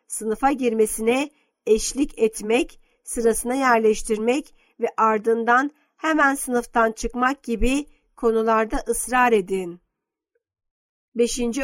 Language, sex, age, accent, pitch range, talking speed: Turkish, female, 50-69, native, 225-275 Hz, 80 wpm